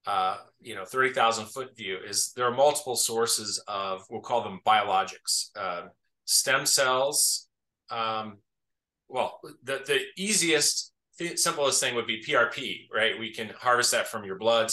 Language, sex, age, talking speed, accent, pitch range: English, male, 30-49, 160 wpm, American, 110-130 Hz